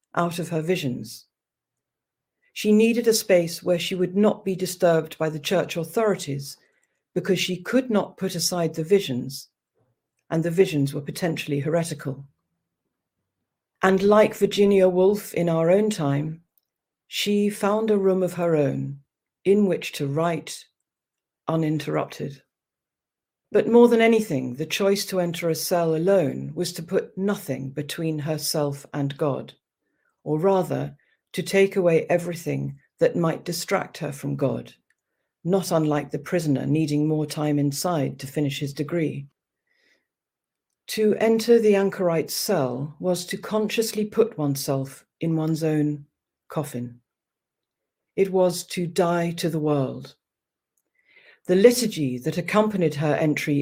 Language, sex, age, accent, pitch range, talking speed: English, female, 50-69, British, 145-195 Hz, 135 wpm